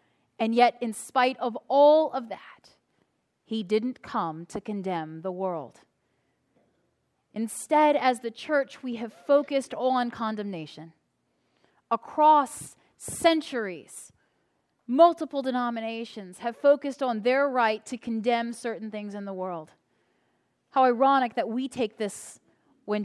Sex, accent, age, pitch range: female, American, 30-49, 215-275 Hz